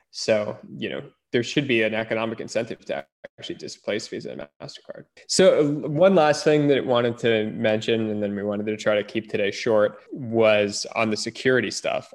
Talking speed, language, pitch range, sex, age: 195 wpm, English, 105-120 Hz, male, 10-29